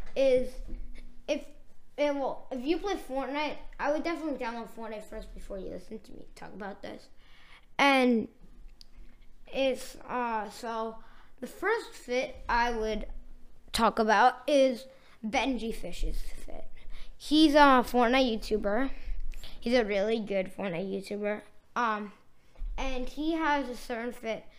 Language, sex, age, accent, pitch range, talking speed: English, female, 20-39, American, 215-270 Hz, 130 wpm